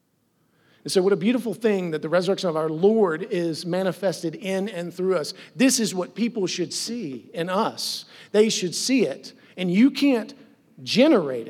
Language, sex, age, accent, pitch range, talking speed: English, male, 40-59, American, 160-195 Hz, 175 wpm